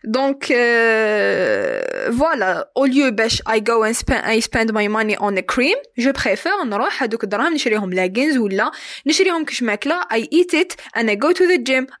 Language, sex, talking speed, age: Arabic, female, 165 wpm, 20-39